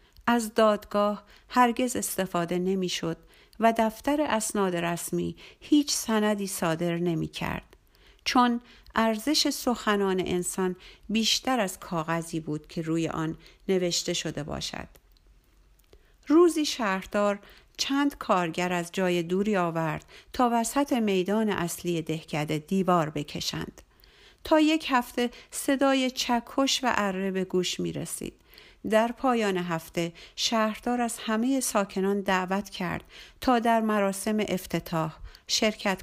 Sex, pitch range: female, 180-240 Hz